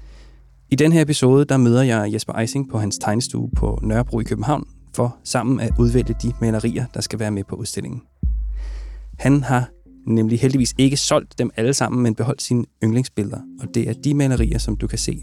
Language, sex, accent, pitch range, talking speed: Danish, male, native, 105-130 Hz, 195 wpm